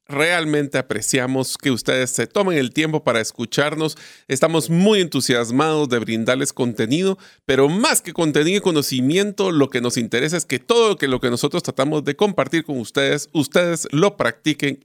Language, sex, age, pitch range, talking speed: Spanish, male, 40-59, 130-190 Hz, 160 wpm